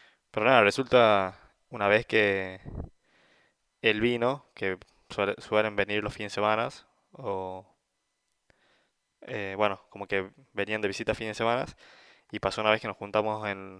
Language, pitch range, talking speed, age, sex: Spanish, 105-120 Hz, 150 wpm, 20-39, male